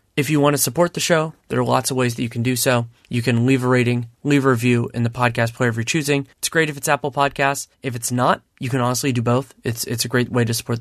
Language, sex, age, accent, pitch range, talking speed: English, male, 30-49, American, 120-135 Hz, 295 wpm